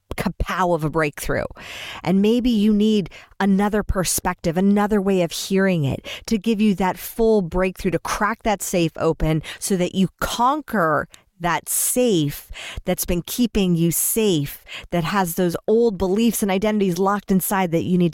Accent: American